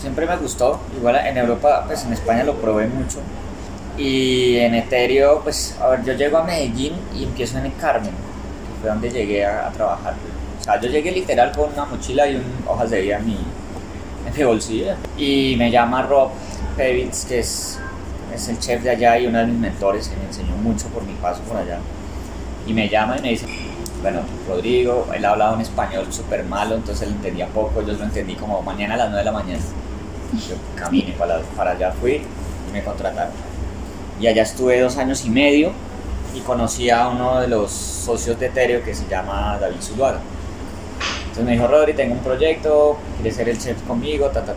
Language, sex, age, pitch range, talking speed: Spanish, male, 20-39, 90-120 Hz, 205 wpm